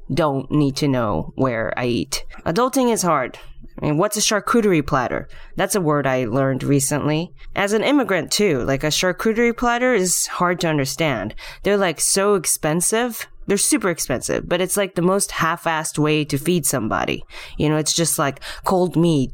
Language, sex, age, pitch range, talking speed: English, female, 20-39, 145-185 Hz, 180 wpm